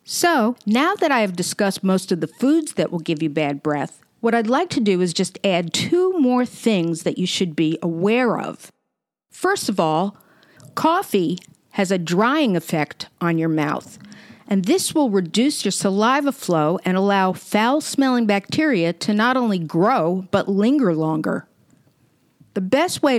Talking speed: 170 wpm